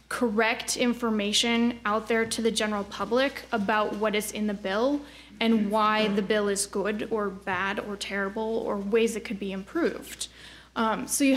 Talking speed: 175 wpm